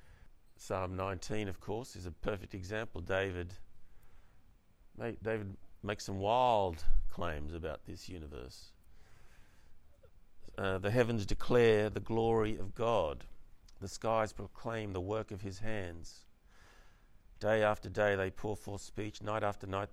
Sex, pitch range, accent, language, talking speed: male, 90-105 Hz, Australian, English, 130 wpm